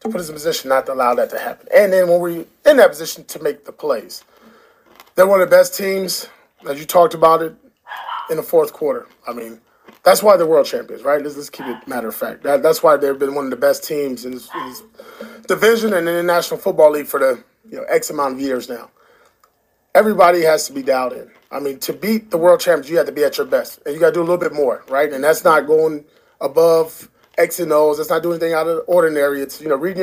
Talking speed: 260 wpm